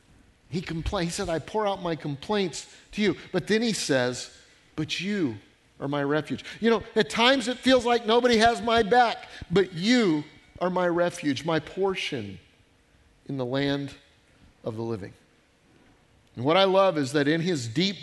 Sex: male